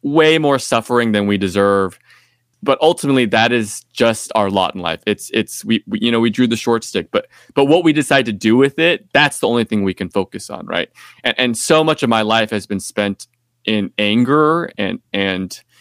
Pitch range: 110-145 Hz